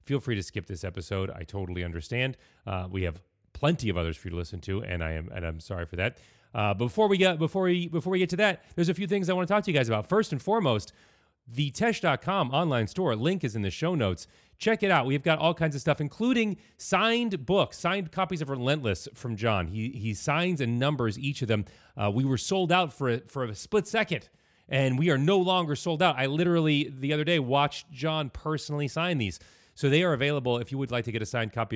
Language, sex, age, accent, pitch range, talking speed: English, male, 30-49, American, 105-150 Hz, 250 wpm